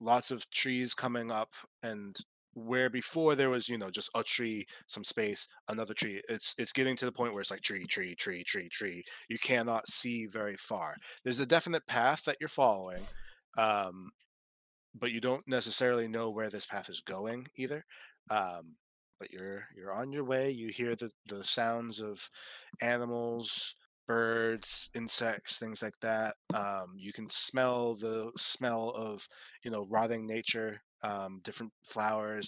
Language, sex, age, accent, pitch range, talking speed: English, male, 20-39, American, 105-120 Hz, 165 wpm